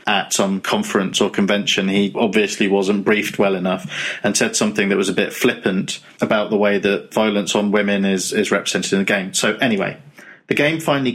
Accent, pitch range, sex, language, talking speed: British, 100-125 Hz, male, English, 200 wpm